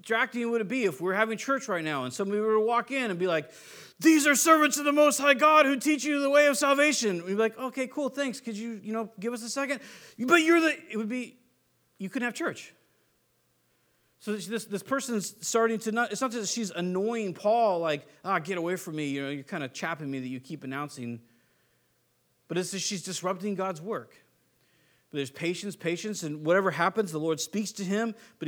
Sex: male